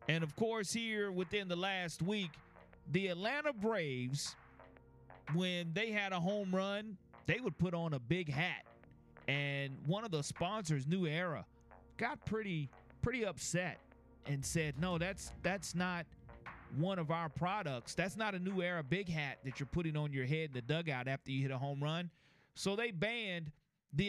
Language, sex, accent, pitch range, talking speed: English, male, American, 150-190 Hz, 175 wpm